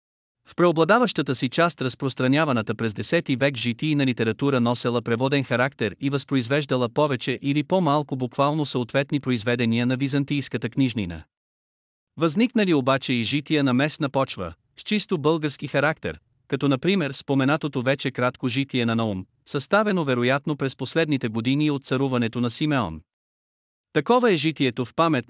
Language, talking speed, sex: Bulgarian, 140 wpm, male